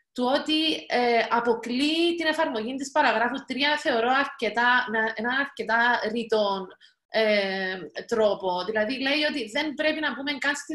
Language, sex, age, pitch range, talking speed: Greek, female, 30-49, 220-290 Hz, 135 wpm